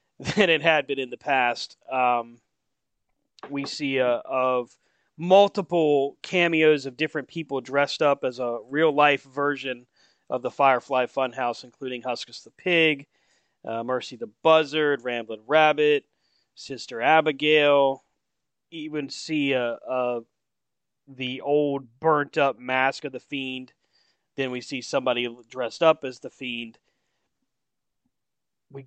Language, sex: English, male